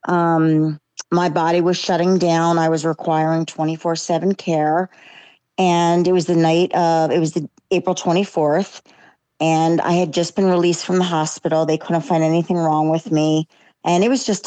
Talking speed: 180 wpm